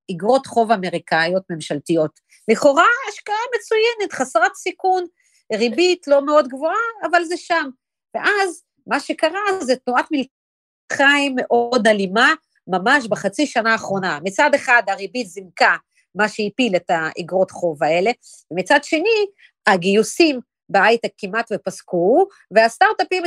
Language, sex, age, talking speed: Hebrew, female, 40-59, 115 wpm